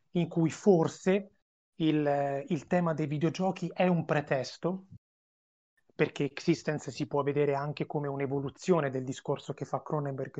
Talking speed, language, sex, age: 140 wpm, Italian, male, 30-49